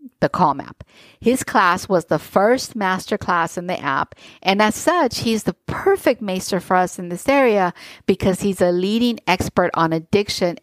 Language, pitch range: English, 175-220 Hz